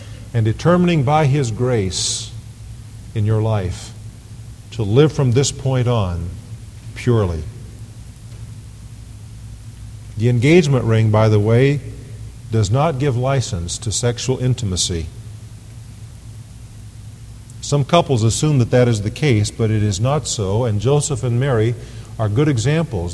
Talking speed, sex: 125 wpm, male